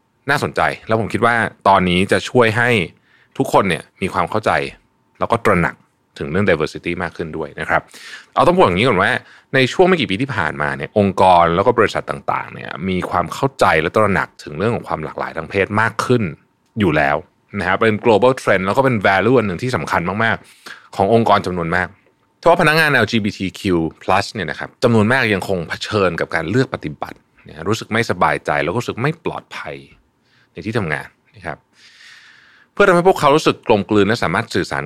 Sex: male